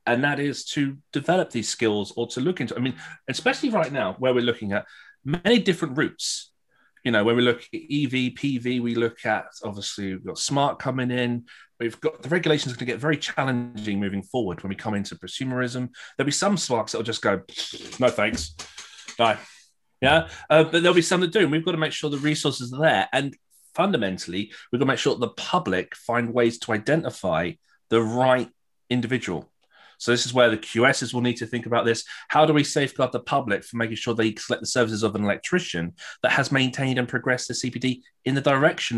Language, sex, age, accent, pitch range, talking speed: English, male, 30-49, British, 115-150 Hz, 215 wpm